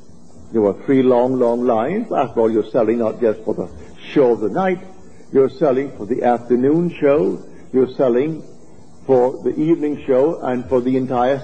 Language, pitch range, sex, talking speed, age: English, 125-180 Hz, male, 180 wpm, 60-79